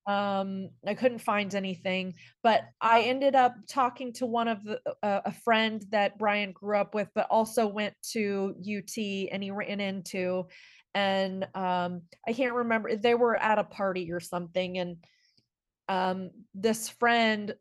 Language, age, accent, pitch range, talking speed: English, 30-49, American, 190-235 Hz, 160 wpm